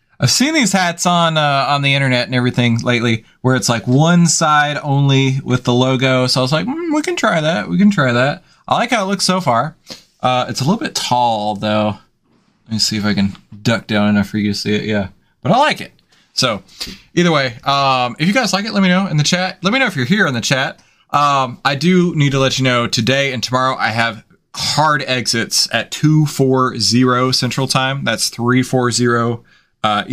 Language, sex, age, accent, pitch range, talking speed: English, male, 20-39, American, 115-150 Hz, 235 wpm